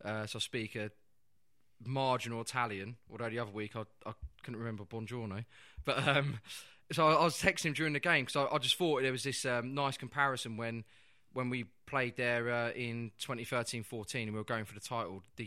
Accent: British